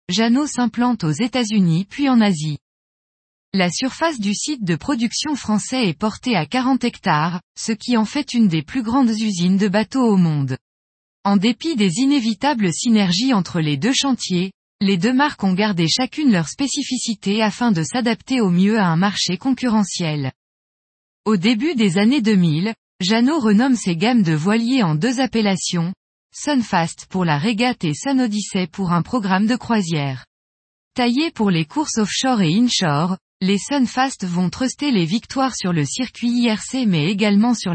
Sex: female